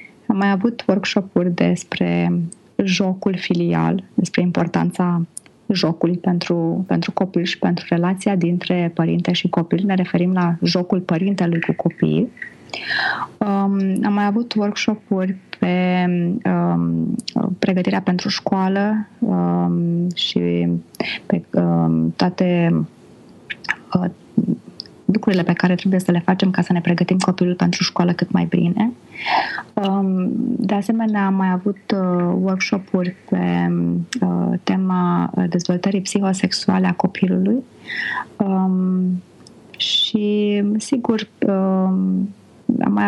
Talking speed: 110 wpm